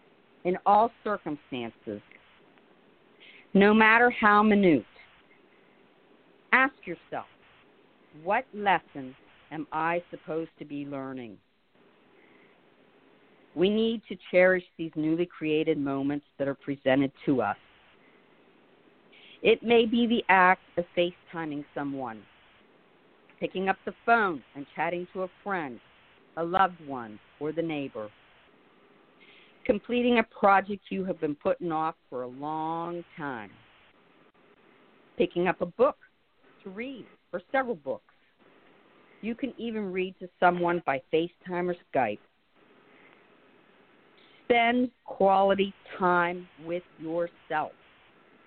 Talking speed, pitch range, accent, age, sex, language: 110 wpm, 155-205 Hz, American, 50-69, female, English